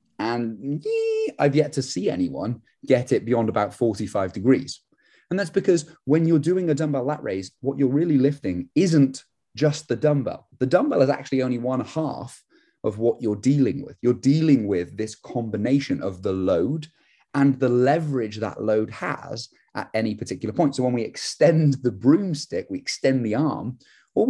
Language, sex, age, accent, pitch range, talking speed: English, male, 30-49, British, 105-140 Hz, 175 wpm